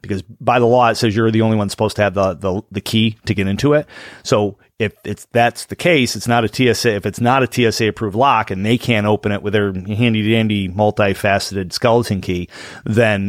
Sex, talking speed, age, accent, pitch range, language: male, 220 wpm, 30-49, American, 95-115 Hz, English